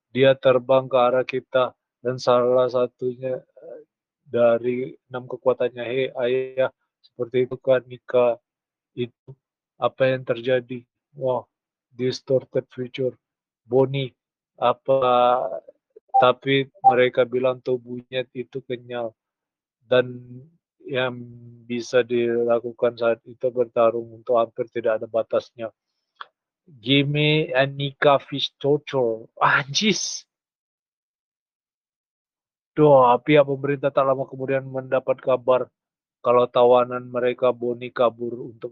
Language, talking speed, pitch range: Indonesian, 100 wpm, 120-130 Hz